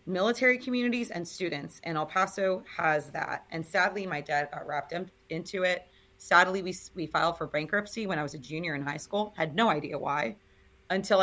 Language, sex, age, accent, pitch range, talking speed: English, female, 30-49, American, 155-180 Hz, 190 wpm